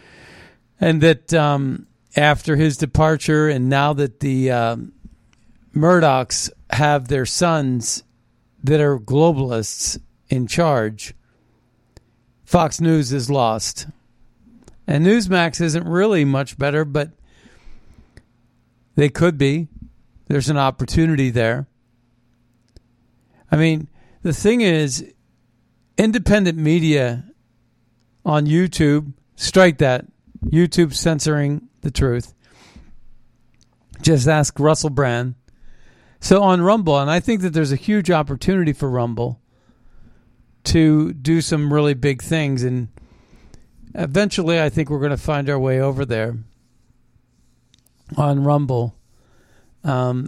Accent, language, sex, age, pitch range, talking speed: American, English, male, 50-69, 120-160 Hz, 110 wpm